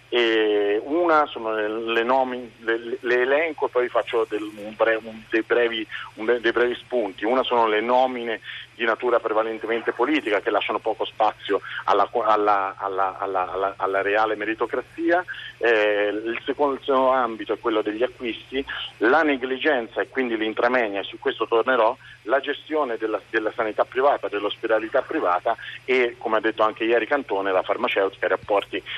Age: 40-59